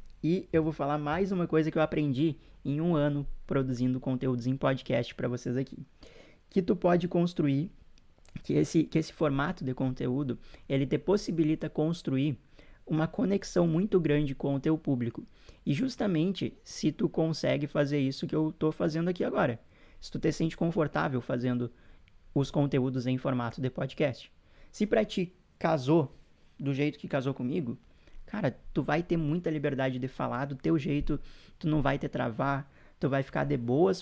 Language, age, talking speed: Portuguese, 20-39, 170 wpm